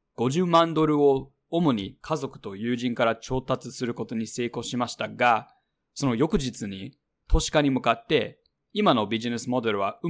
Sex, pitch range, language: male, 110-150 Hz, Japanese